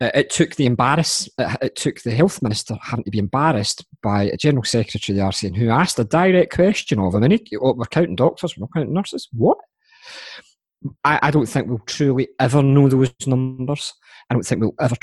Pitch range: 120-160 Hz